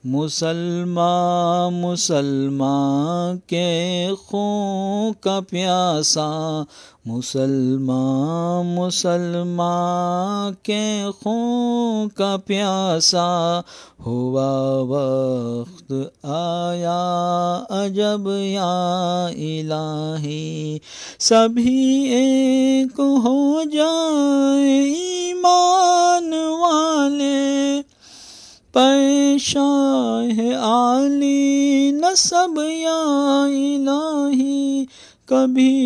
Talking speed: 50 wpm